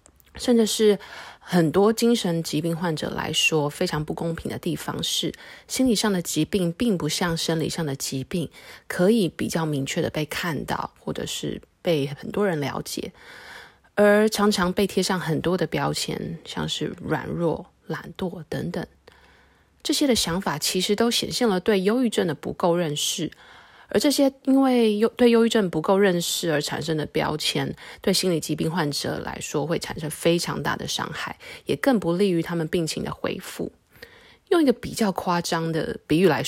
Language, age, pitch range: Chinese, 20-39, 165-235 Hz